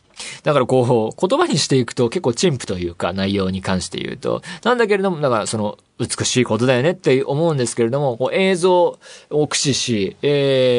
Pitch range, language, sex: 105-160 Hz, Japanese, male